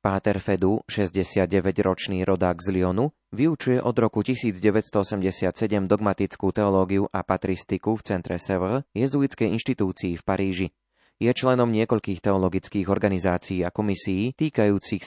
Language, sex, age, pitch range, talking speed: Slovak, male, 20-39, 95-105 Hz, 115 wpm